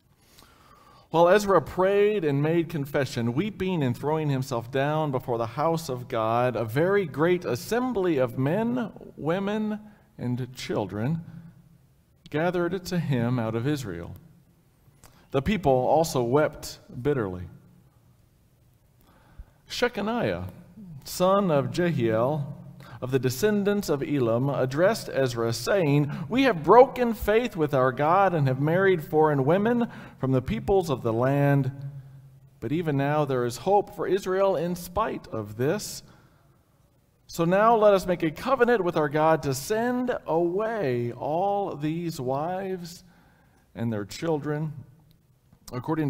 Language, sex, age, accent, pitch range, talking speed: English, male, 40-59, American, 130-180 Hz, 130 wpm